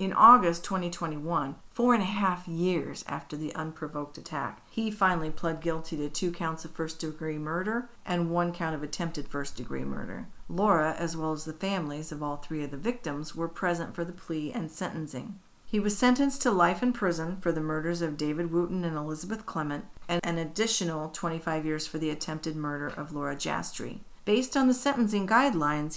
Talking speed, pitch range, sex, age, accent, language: 185 wpm, 155-190 Hz, female, 50-69, American, English